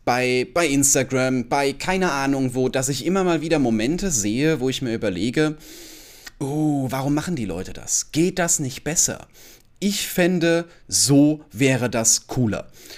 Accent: German